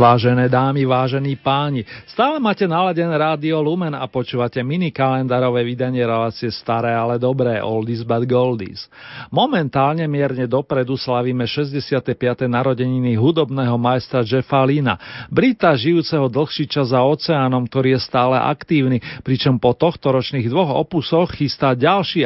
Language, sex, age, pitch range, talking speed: Slovak, male, 40-59, 125-155 Hz, 125 wpm